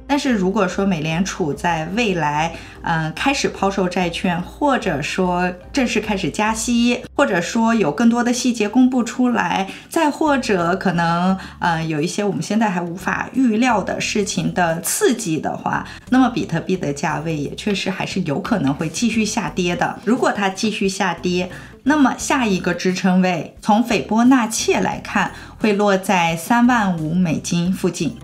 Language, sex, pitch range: Chinese, female, 175-240 Hz